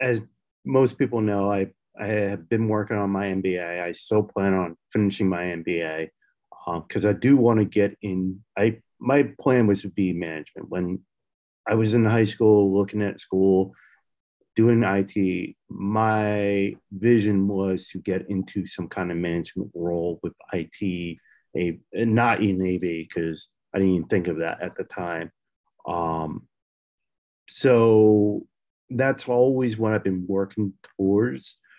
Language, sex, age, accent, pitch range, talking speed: English, male, 30-49, American, 90-105 Hz, 155 wpm